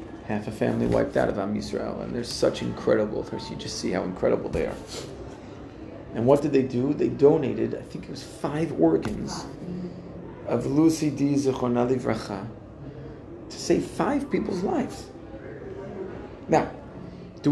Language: English